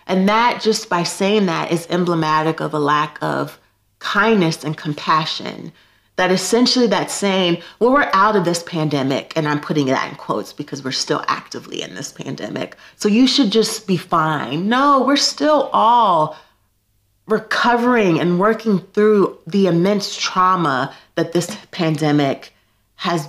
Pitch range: 155-215 Hz